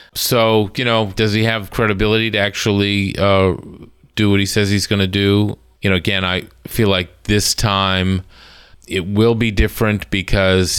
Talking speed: 170 wpm